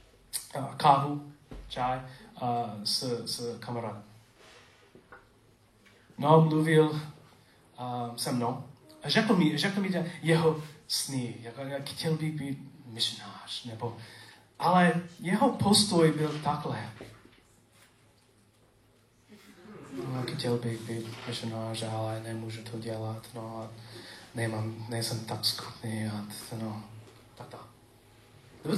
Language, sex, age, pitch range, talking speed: Czech, male, 30-49, 115-175 Hz, 110 wpm